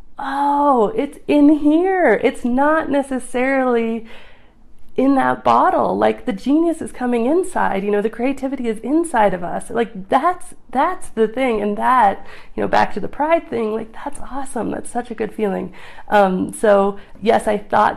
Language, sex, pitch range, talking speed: English, female, 190-235 Hz, 170 wpm